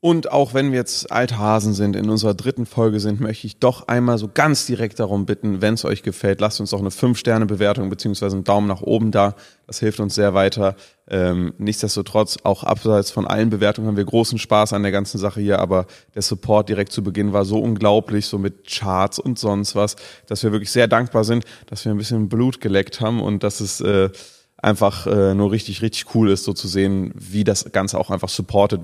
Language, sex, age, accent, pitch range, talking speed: German, male, 30-49, German, 100-120 Hz, 225 wpm